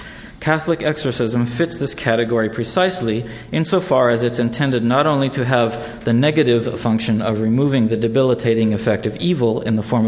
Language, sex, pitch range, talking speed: English, male, 110-135 Hz, 160 wpm